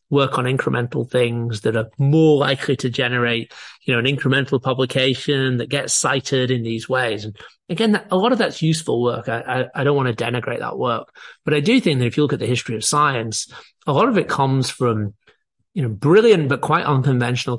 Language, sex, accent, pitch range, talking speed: English, male, British, 115-145 Hz, 215 wpm